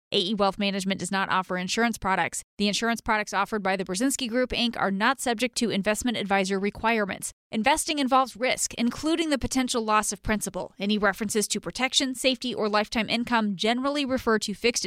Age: 20-39